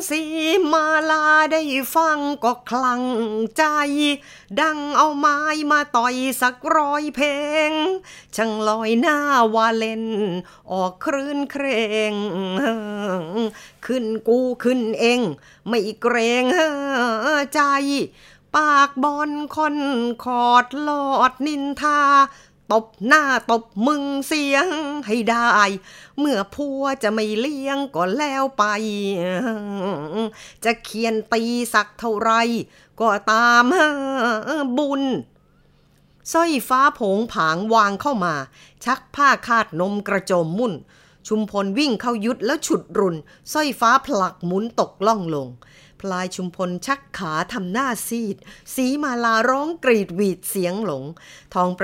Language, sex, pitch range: Thai, female, 200-280 Hz